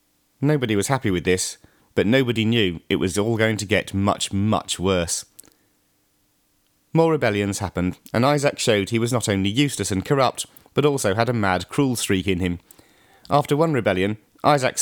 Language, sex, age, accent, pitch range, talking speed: English, male, 30-49, British, 95-130 Hz, 175 wpm